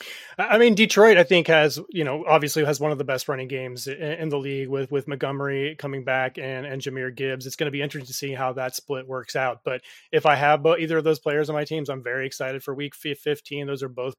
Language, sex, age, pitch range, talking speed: English, male, 30-49, 130-145 Hz, 255 wpm